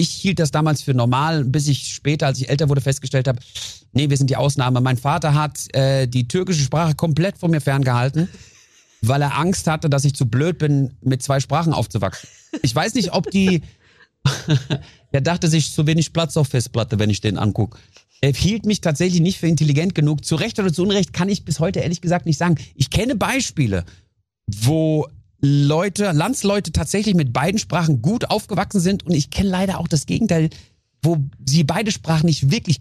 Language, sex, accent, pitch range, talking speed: German, male, German, 130-170 Hz, 200 wpm